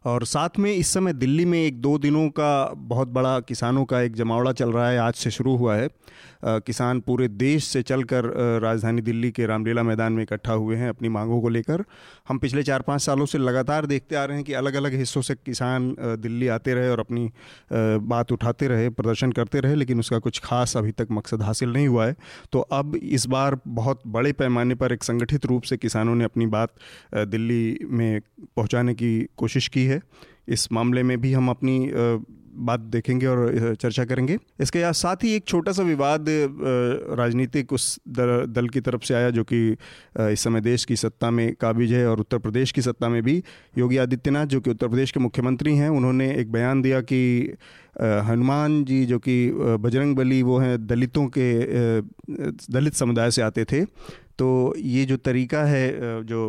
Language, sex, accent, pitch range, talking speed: Hindi, male, native, 115-135 Hz, 190 wpm